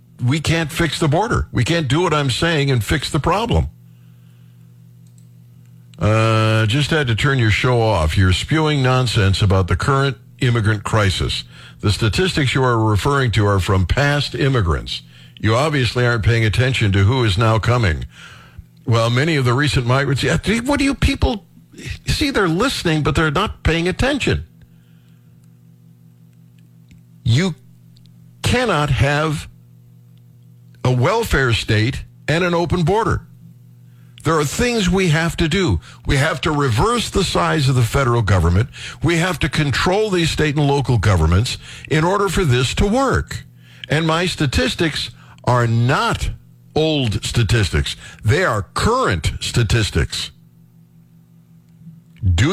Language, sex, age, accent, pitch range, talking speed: English, male, 60-79, American, 95-150 Hz, 145 wpm